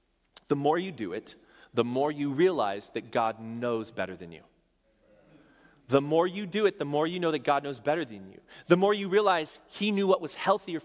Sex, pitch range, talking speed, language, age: male, 155-200 Hz, 215 wpm, English, 30-49